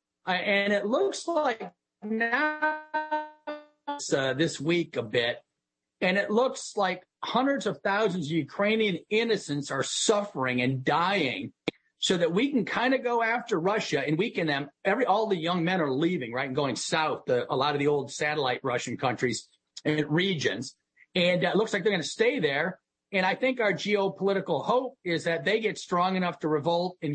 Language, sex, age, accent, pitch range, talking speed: English, male, 40-59, American, 150-215 Hz, 190 wpm